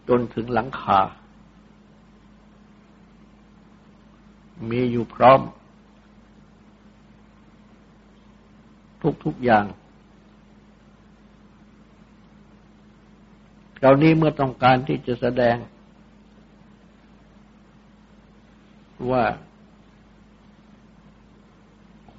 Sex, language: male, Thai